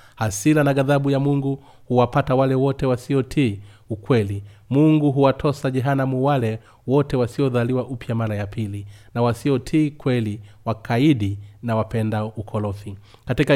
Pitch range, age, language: 110-140 Hz, 30-49, Swahili